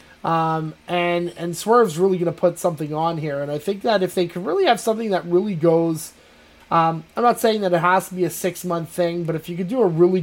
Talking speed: 260 wpm